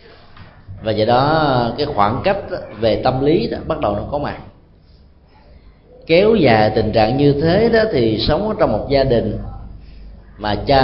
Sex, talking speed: male, 165 wpm